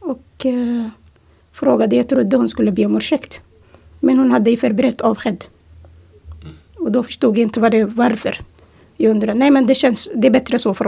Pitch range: 235-290 Hz